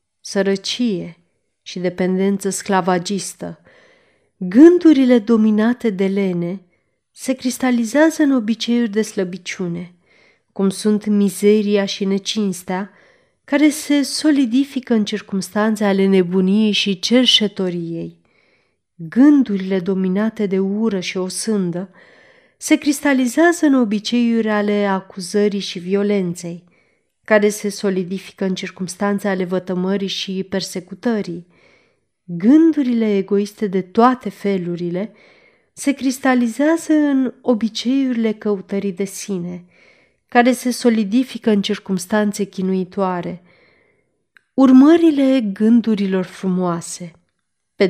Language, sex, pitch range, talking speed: Romanian, female, 190-245 Hz, 90 wpm